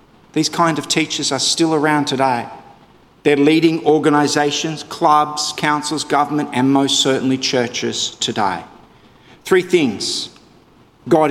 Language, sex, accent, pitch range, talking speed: English, male, Australian, 145-210 Hz, 115 wpm